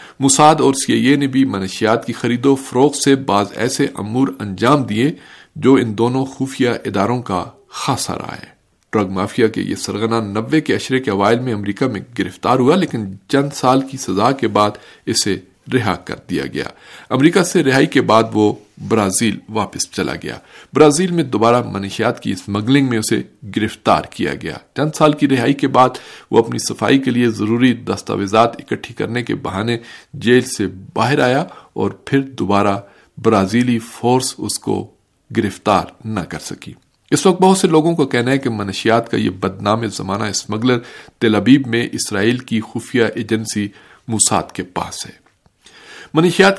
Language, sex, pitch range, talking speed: Urdu, male, 105-135 Hz, 170 wpm